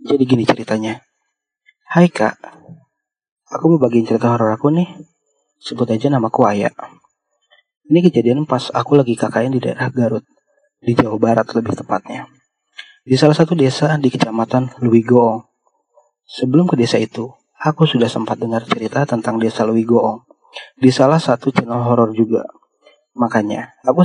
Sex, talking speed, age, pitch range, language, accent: male, 140 wpm, 30-49, 115-150 Hz, Indonesian, native